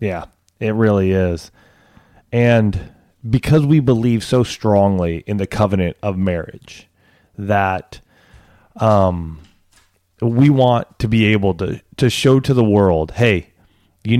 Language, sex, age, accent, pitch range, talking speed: English, male, 30-49, American, 95-115 Hz, 125 wpm